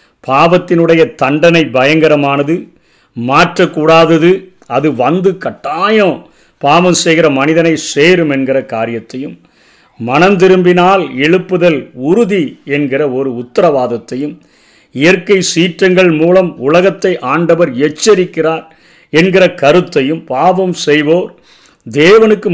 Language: Tamil